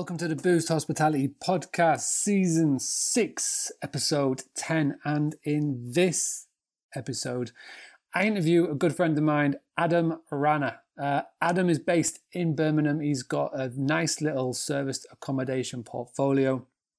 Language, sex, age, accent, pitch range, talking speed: English, male, 30-49, British, 135-170 Hz, 130 wpm